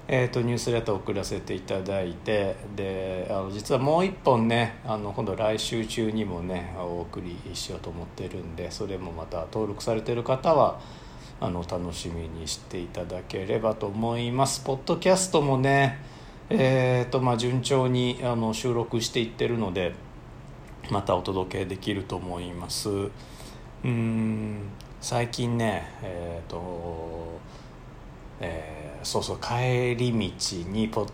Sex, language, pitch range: male, Japanese, 90-120 Hz